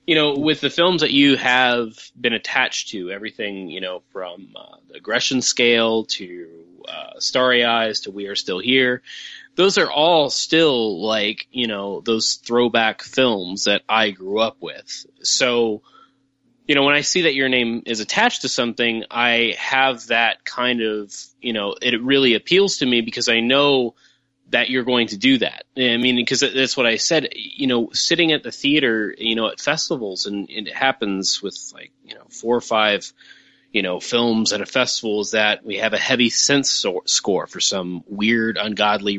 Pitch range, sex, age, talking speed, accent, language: 110-135 Hz, male, 20-39, 190 wpm, American, English